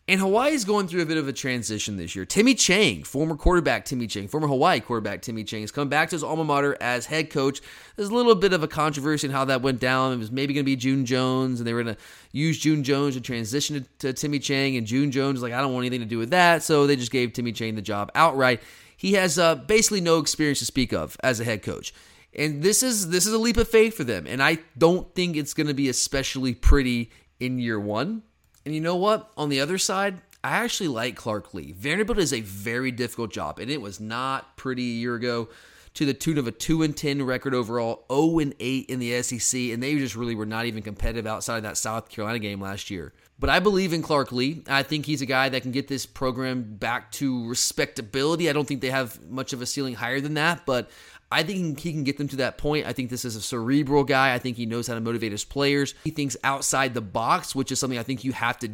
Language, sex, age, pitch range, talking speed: English, male, 30-49, 120-155 Hz, 255 wpm